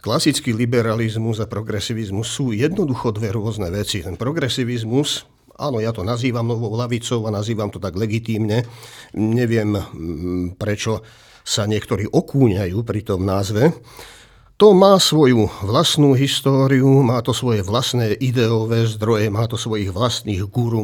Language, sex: Slovak, male